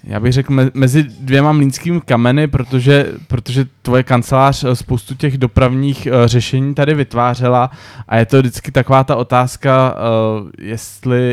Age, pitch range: 20-39, 120-135 Hz